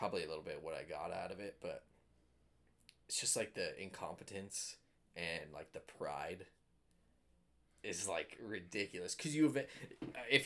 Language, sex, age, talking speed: English, male, 20-39, 150 wpm